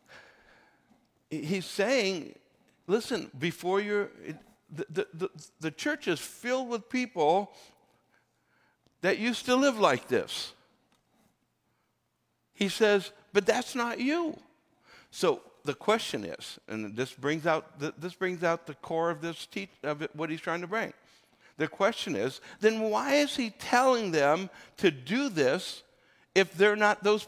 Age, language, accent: 60-79, English, American